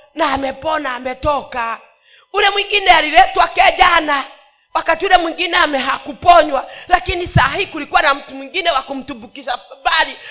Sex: female